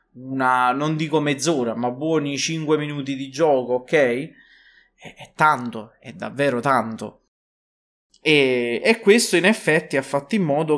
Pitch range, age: 130-195 Hz, 30-49